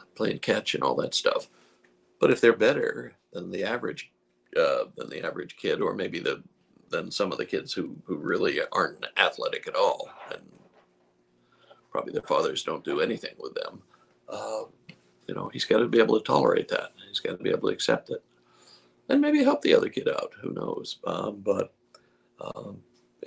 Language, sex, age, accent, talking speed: English, male, 60-79, American, 190 wpm